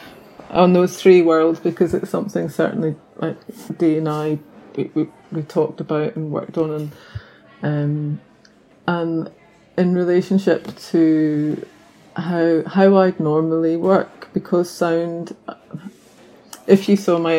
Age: 30-49